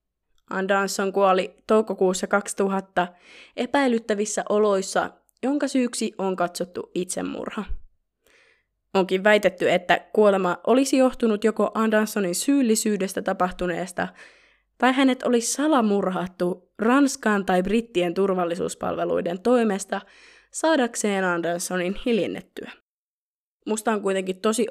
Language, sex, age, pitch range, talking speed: Finnish, female, 20-39, 180-230 Hz, 90 wpm